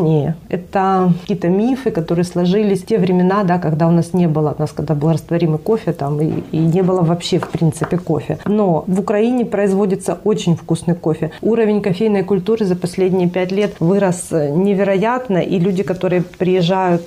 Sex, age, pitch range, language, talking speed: female, 30-49, 175-205 Hz, Ukrainian, 170 wpm